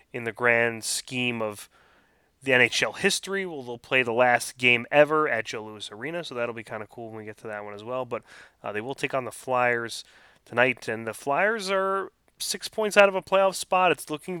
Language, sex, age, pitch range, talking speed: English, male, 20-39, 110-140 Hz, 230 wpm